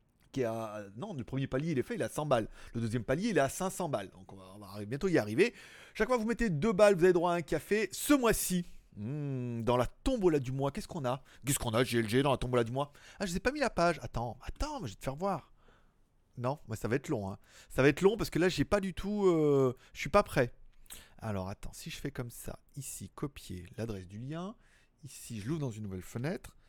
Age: 30-49